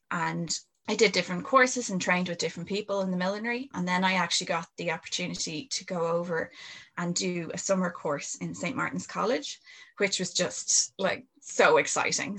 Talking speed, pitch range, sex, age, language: 185 wpm, 170-195 Hz, female, 20-39, English